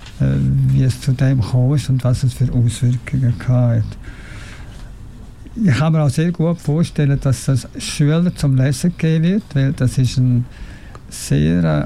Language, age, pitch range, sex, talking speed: English, 60-79, 125-150 Hz, male, 150 wpm